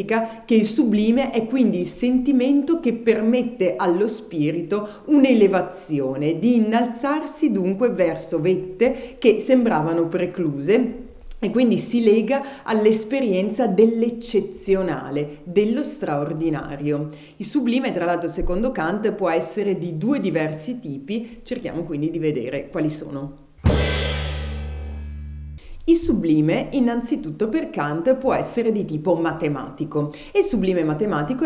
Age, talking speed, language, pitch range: 30-49, 115 wpm, Italian, 160-240 Hz